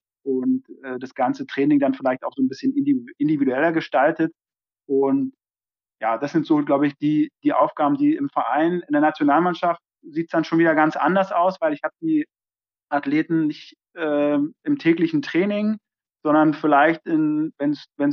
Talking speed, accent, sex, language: 170 wpm, German, male, German